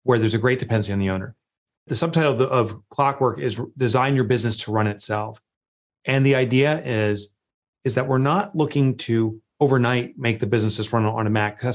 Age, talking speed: 30-49, 200 wpm